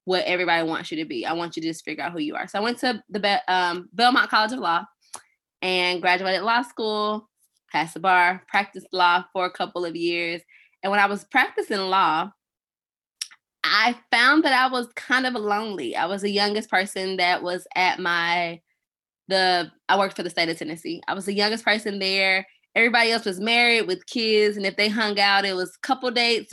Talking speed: 210 wpm